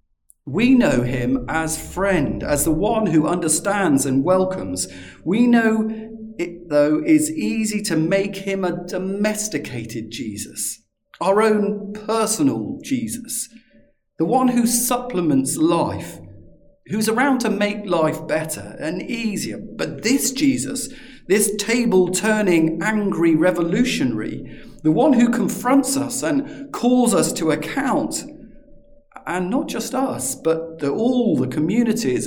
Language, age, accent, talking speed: English, 40-59, British, 125 wpm